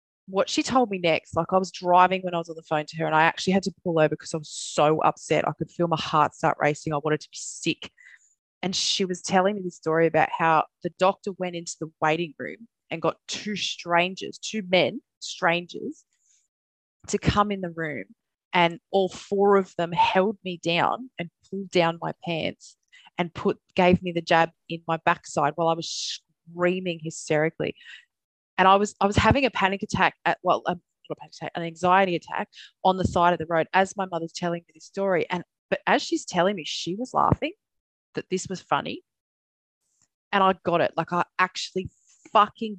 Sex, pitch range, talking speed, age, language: female, 165-195 Hz, 210 wpm, 20-39, English